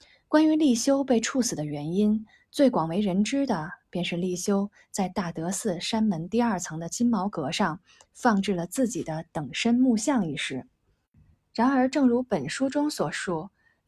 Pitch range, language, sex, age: 180-240 Hz, Chinese, female, 20-39